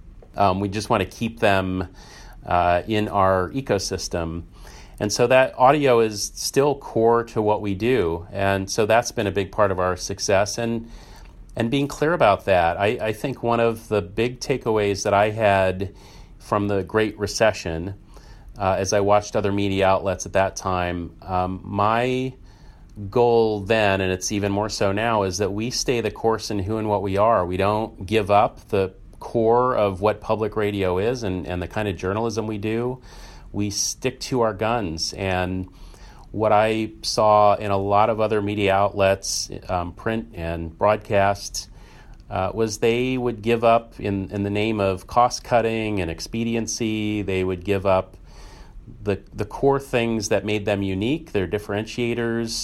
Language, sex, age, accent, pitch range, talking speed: English, male, 40-59, American, 95-115 Hz, 175 wpm